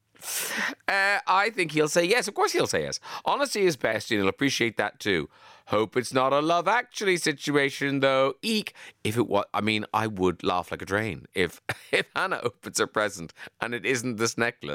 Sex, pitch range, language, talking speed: male, 110-160 Hz, English, 210 wpm